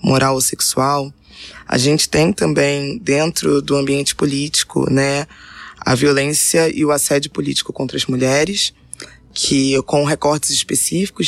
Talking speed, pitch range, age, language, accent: 135 wpm, 140-155 Hz, 20-39, Portuguese, Brazilian